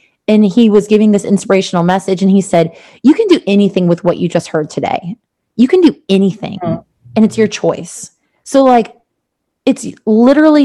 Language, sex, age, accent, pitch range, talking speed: English, female, 20-39, American, 185-225 Hz, 180 wpm